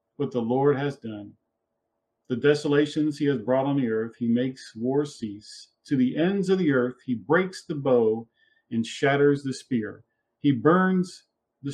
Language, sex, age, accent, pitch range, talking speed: English, male, 40-59, American, 115-140 Hz, 175 wpm